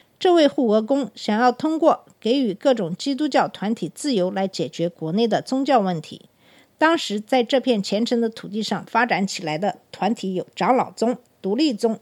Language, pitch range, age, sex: Chinese, 195-265 Hz, 50-69, female